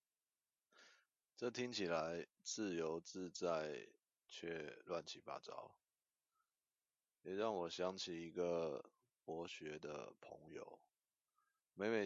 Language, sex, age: Chinese, male, 20-39